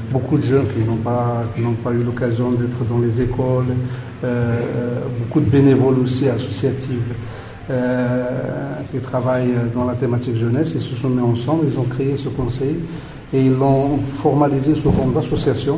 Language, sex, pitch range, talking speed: French, male, 120-135 Hz, 170 wpm